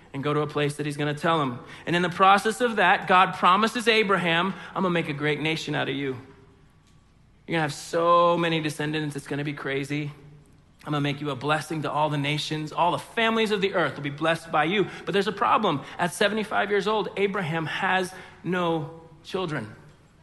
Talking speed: 225 wpm